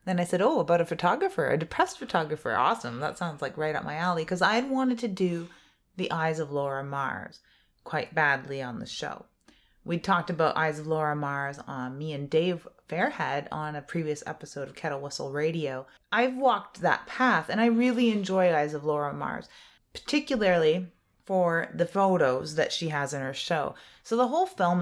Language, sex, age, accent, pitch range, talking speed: English, female, 30-49, American, 145-195 Hz, 190 wpm